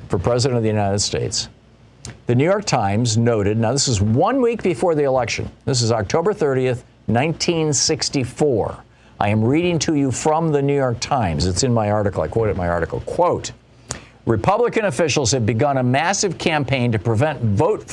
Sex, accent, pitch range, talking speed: male, American, 115-145 Hz, 175 wpm